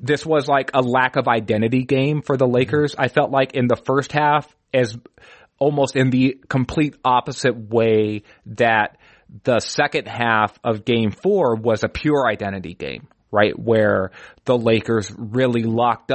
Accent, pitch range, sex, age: American, 110-130 Hz, male, 30-49